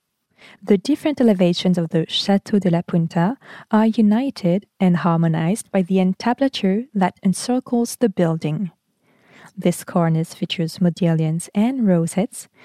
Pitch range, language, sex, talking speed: 170-215 Hz, French, female, 125 wpm